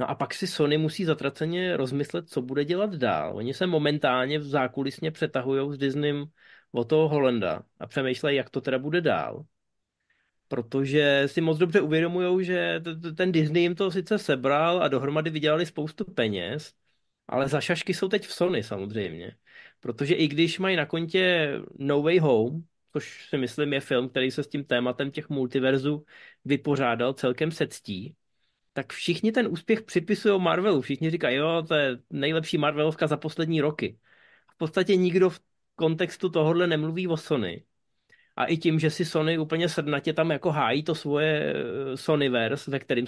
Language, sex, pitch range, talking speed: Czech, male, 135-175 Hz, 170 wpm